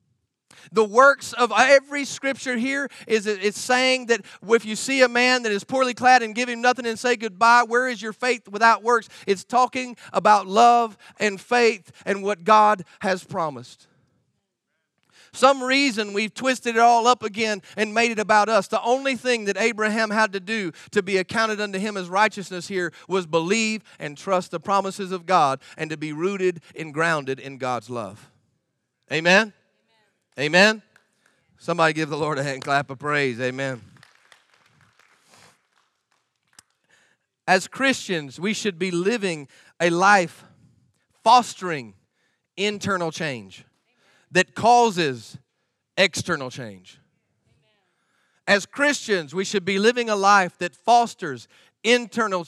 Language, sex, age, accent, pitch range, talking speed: English, male, 40-59, American, 165-230 Hz, 145 wpm